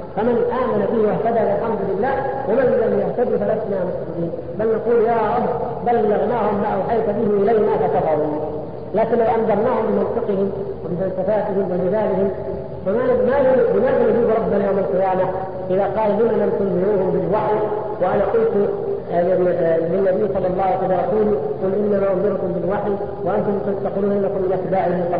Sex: female